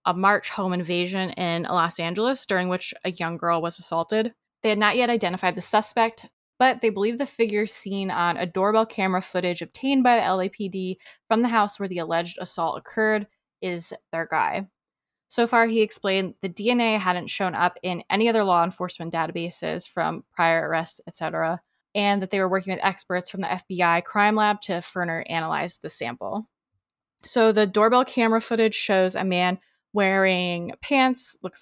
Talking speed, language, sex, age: 180 wpm, English, female, 20-39